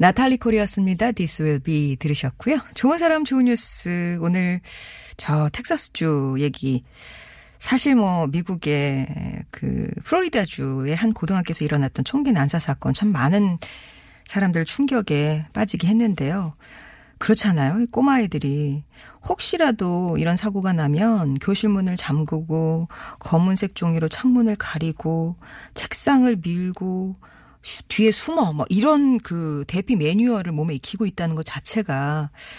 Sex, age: female, 40-59